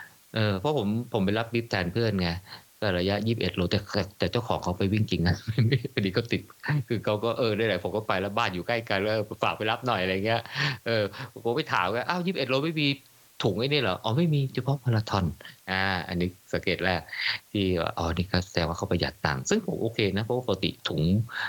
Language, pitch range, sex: Thai, 95-125 Hz, male